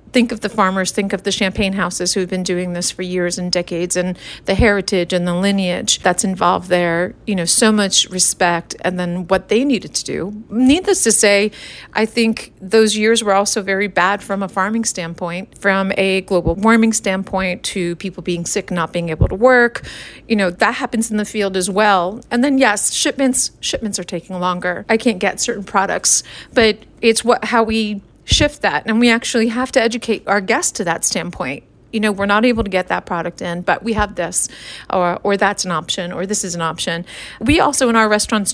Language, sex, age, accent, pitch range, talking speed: English, female, 40-59, American, 185-225 Hz, 215 wpm